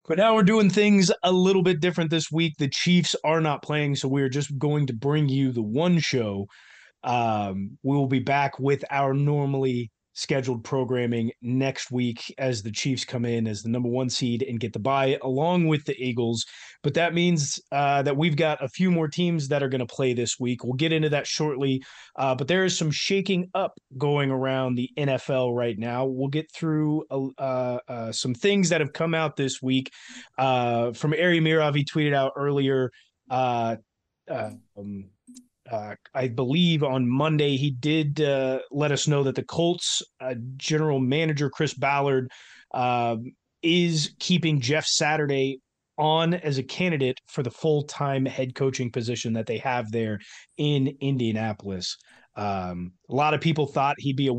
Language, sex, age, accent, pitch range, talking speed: English, male, 30-49, American, 130-155 Hz, 180 wpm